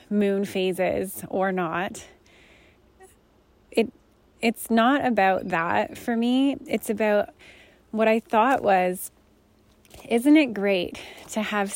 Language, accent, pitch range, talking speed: English, American, 185-215 Hz, 110 wpm